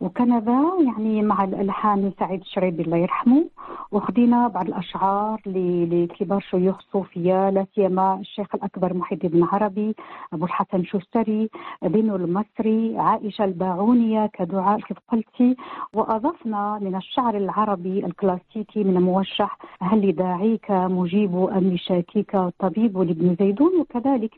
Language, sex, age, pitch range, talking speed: Arabic, female, 40-59, 195-255 Hz, 115 wpm